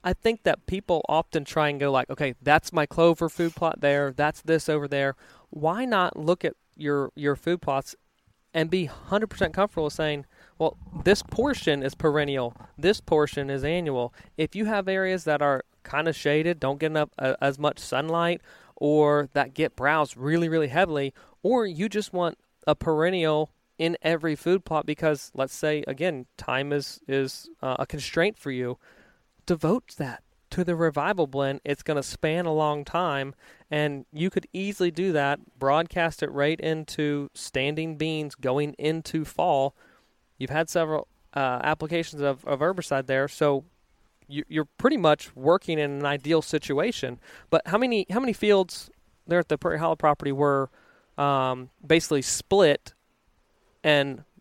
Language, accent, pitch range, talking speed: English, American, 140-170 Hz, 165 wpm